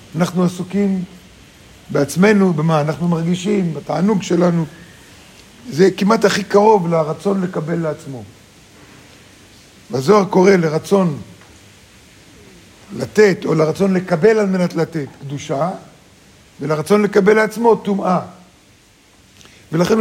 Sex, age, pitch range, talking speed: male, 50-69, 150-195 Hz, 95 wpm